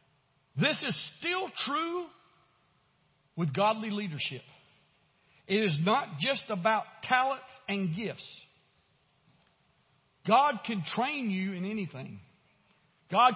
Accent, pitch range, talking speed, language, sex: American, 145-210 Hz, 100 wpm, English, male